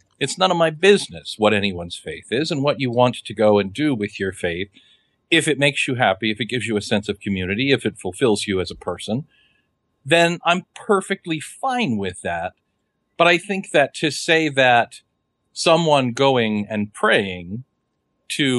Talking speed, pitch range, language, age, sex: 185 wpm, 105-140 Hz, English, 50-69, male